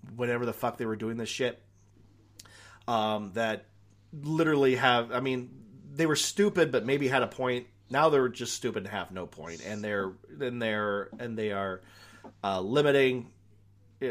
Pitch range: 100-140 Hz